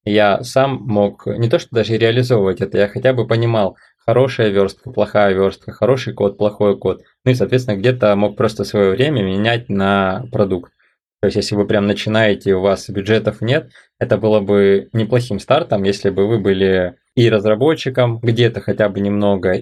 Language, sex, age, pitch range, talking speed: Russian, male, 20-39, 100-125 Hz, 175 wpm